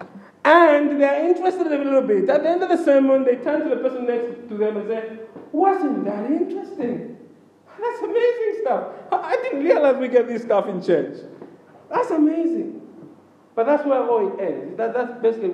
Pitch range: 195-280 Hz